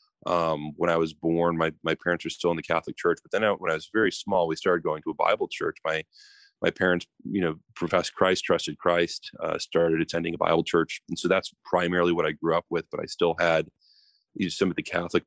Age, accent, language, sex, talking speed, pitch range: 30-49, American, English, male, 250 wpm, 85-100 Hz